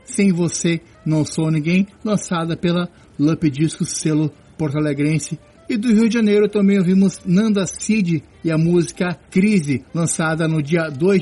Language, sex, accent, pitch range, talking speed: Portuguese, male, Brazilian, 150-180 Hz, 155 wpm